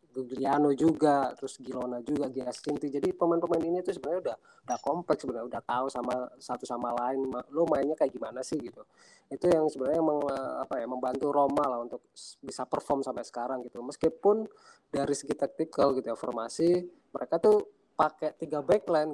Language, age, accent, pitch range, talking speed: Indonesian, 20-39, native, 130-155 Hz, 170 wpm